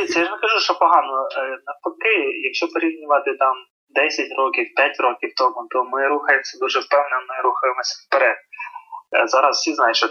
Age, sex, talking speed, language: 20-39, male, 165 wpm, Ukrainian